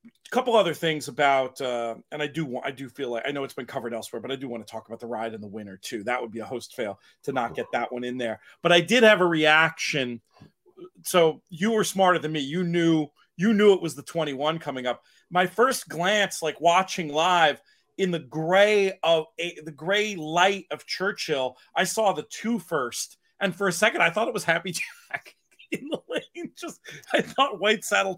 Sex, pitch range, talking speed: male, 140-200 Hz, 230 wpm